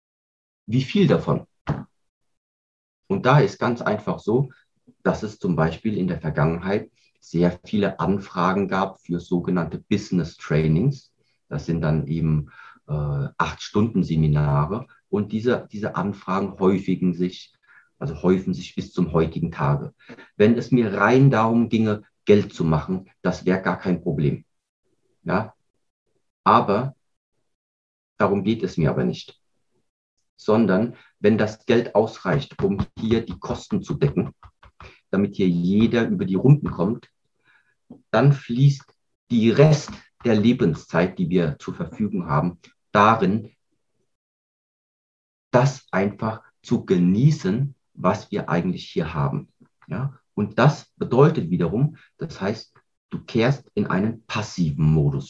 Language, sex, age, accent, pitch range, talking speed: German, male, 40-59, German, 85-125 Hz, 130 wpm